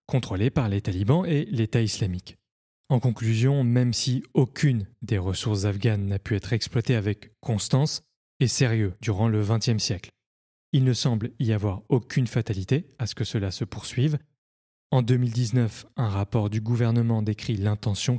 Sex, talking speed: male, 160 wpm